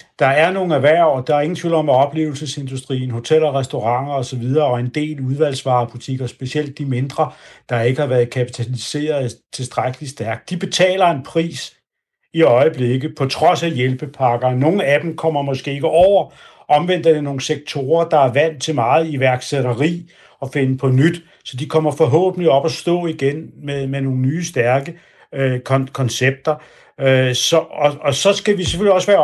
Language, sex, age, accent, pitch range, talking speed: Danish, male, 60-79, native, 135-170 Hz, 175 wpm